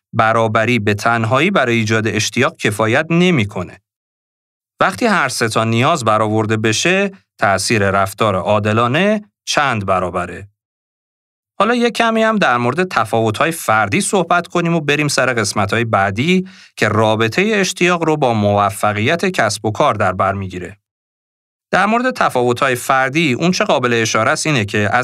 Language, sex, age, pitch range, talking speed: Persian, male, 40-59, 110-160 Hz, 140 wpm